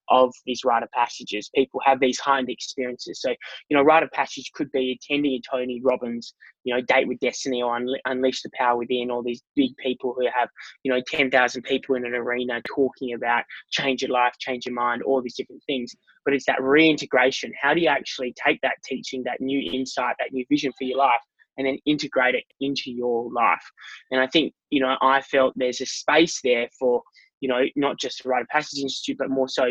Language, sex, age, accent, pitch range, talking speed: English, male, 20-39, Australian, 125-140 Hz, 220 wpm